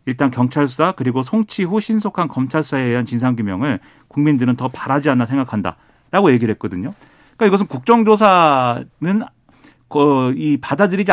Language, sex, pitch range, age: Korean, male, 130-210 Hz, 40-59